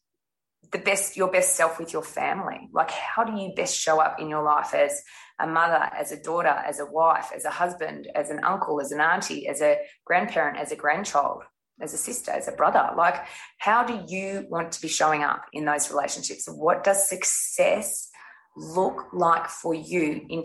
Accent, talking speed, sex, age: Australian, 200 wpm, female, 20-39